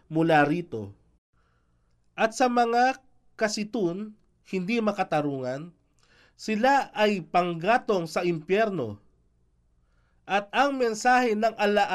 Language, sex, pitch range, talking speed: Filipino, male, 160-220 Hz, 90 wpm